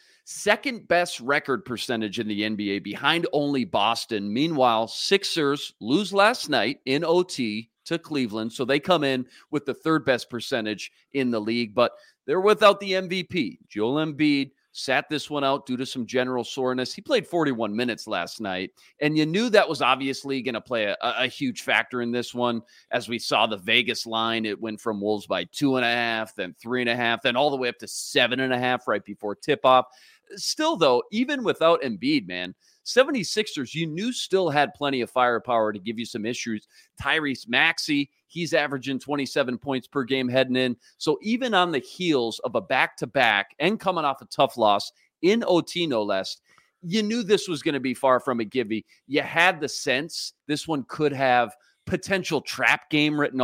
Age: 40-59